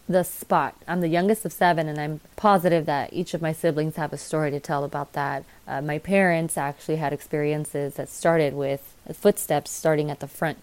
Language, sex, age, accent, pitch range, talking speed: English, female, 20-39, American, 150-170 Hz, 205 wpm